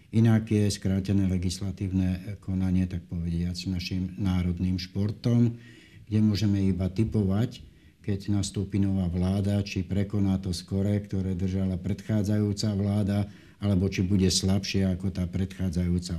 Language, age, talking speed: Slovak, 60-79, 120 wpm